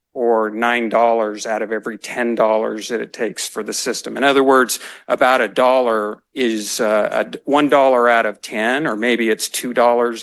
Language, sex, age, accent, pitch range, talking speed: English, male, 50-69, American, 110-130 Hz, 160 wpm